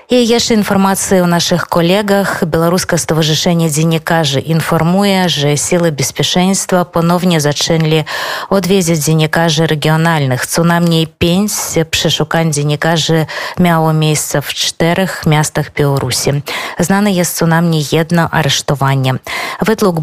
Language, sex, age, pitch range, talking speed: Polish, female, 20-39, 155-185 Hz, 100 wpm